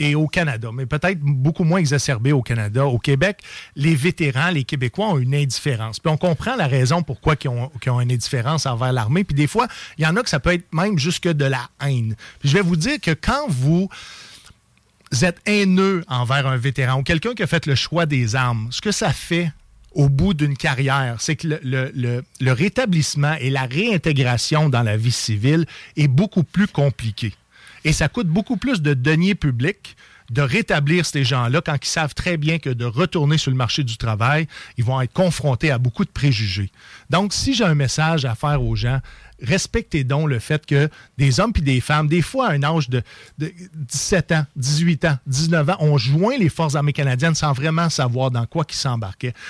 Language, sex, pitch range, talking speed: French, male, 130-165 Hz, 210 wpm